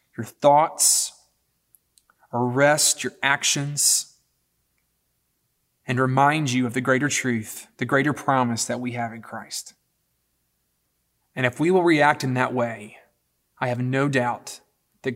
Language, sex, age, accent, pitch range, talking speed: English, male, 30-49, American, 125-150 Hz, 130 wpm